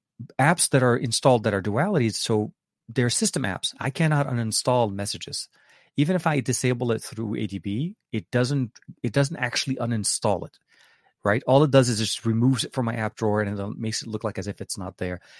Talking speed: 205 wpm